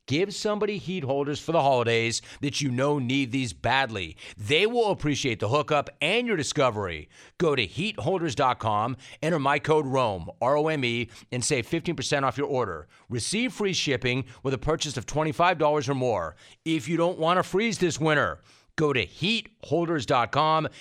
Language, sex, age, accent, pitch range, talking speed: English, male, 40-59, American, 120-165 Hz, 160 wpm